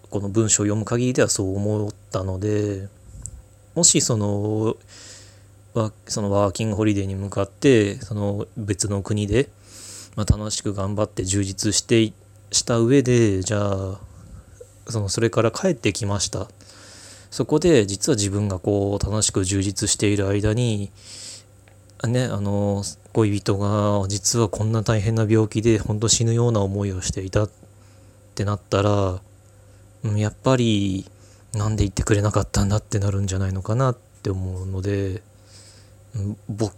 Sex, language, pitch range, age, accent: male, Japanese, 100-110 Hz, 20-39, native